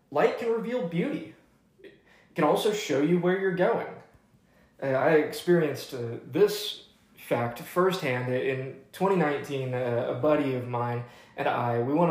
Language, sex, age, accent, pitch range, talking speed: English, male, 20-39, American, 125-165 Hz, 150 wpm